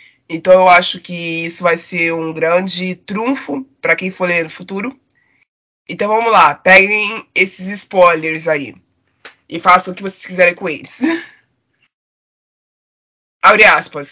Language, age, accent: Portuguese, 20-39, Brazilian